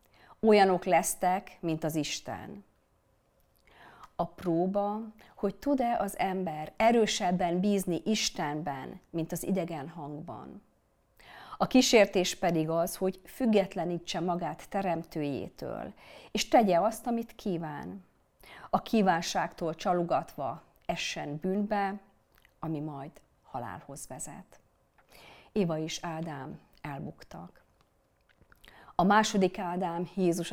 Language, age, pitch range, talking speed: Hungarian, 40-59, 160-190 Hz, 95 wpm